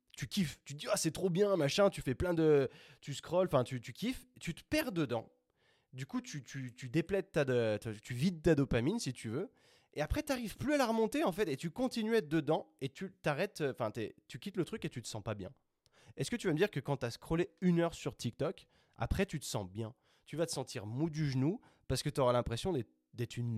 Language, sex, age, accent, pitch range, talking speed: French, male, 20-39, French, 120-170 Hz, 265 wpm